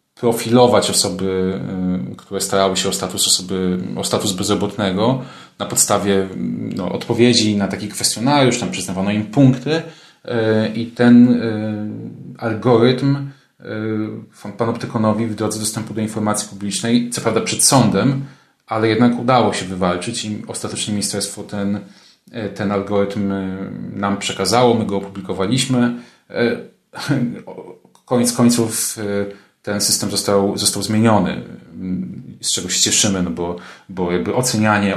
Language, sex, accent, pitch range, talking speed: Polish, male, native, 95-115 Hz, 125 wpm